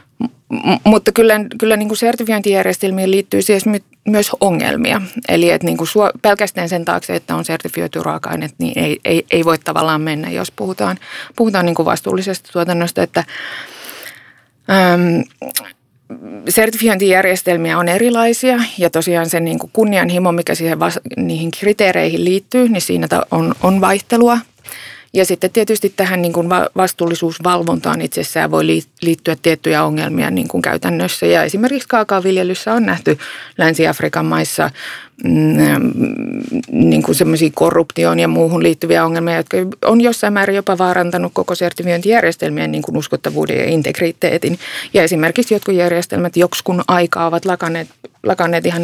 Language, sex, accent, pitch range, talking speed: Finnish, female, native, 165-205 Hz, 135 wpm